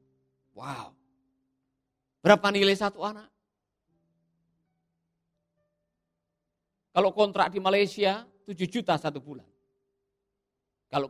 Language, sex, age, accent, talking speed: Indonesian, male, 50-69, native, 75 wpm